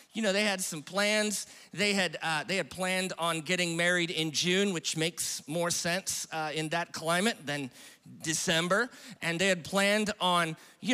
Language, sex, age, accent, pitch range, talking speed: English, male, 40-59, American, 175-225 Hz, 180 wpm